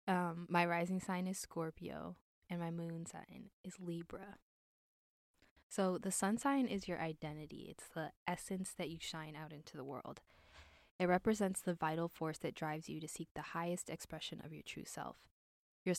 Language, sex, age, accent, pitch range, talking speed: English, female, 10-29, American, 160-180 Hz, 175 wpm